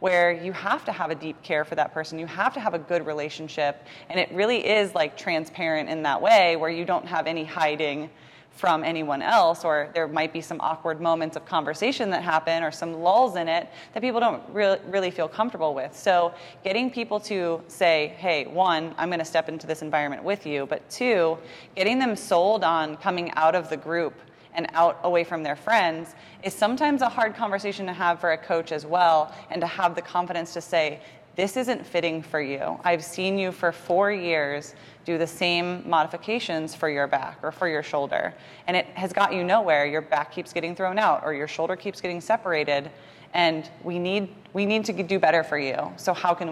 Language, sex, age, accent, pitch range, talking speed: English, female, 30-49, American, 155-185 Hz, 210 wpm